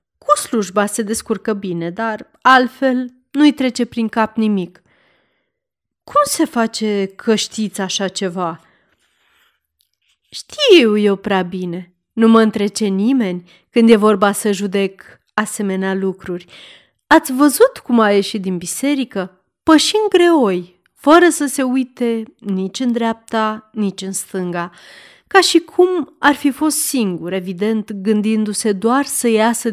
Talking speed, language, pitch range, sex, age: 130 wpm, Romanian, 195-270 Hz, female, 30-49